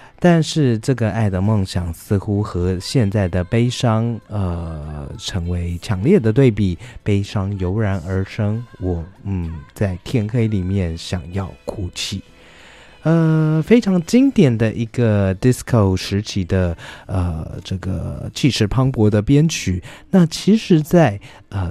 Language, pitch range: Chinese, 95-125 Hz